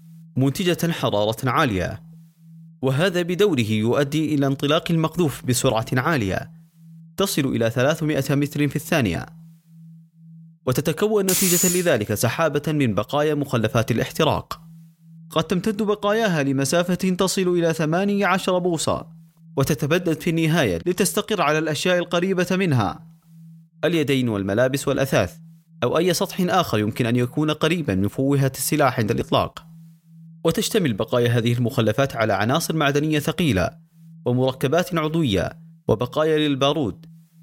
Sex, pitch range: male, 135-165 Hz